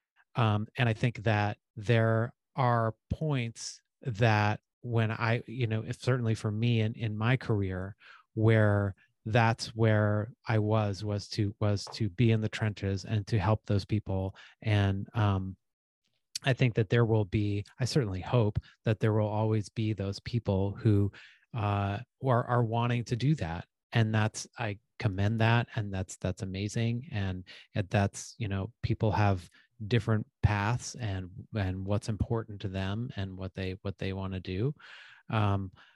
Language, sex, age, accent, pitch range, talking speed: English, male, 30-49, American, 105-120 Hz, 160 wpm